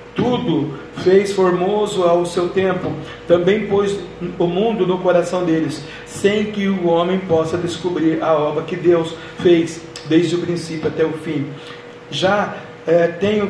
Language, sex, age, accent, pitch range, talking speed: Portuguese, male, 40-59, Brazilian, 160-190 Hz, 140 wpm